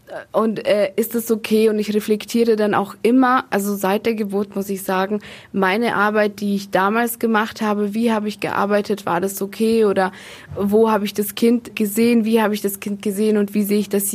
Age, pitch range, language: 20-39, 190-225 Hz, German